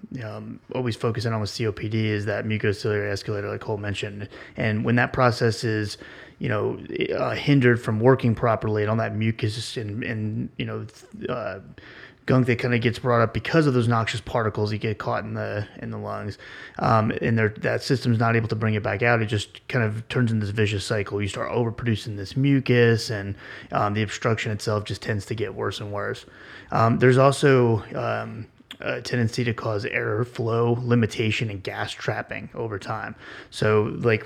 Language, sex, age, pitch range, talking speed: English, male, 30-49, 105-120 Hz, 195 wpm